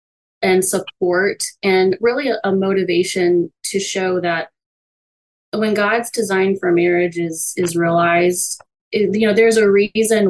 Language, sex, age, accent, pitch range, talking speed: English, female, 20-39, American, 170-195 Hz, 140 wpm